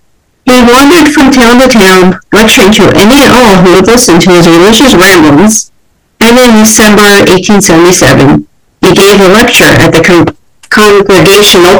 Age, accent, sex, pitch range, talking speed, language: 50-69, American, female, 175-215 Hz, 145 wpm, English